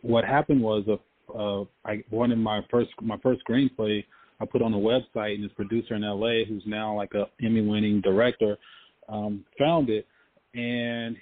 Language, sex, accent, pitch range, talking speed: English, male, American, 105-130 Hz, 180 wpm